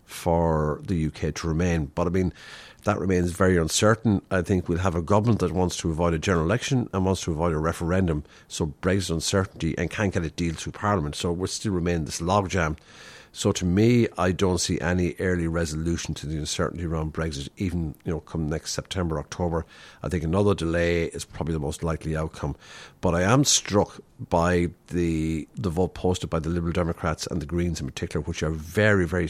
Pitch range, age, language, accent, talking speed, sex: 80-95 Hz, 50-69, English, Irish, 205 wpm, male